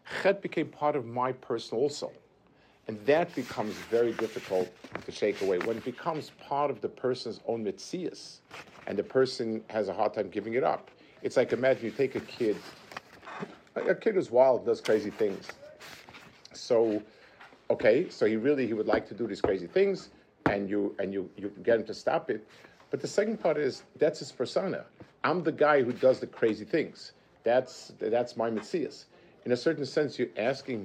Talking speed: 190 wpm